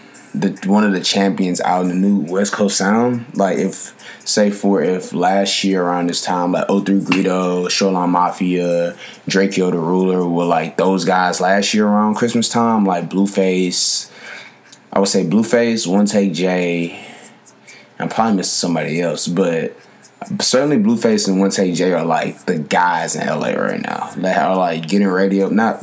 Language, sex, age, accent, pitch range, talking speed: English, male, 20-39, American, 90-105 Hz, 170 wpm